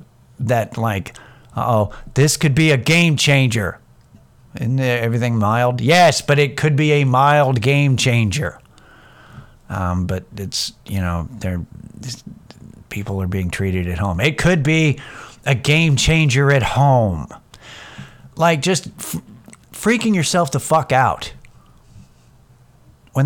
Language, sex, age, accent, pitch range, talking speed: English, male, 50-69, American, 105-140 Hz, 125 wpm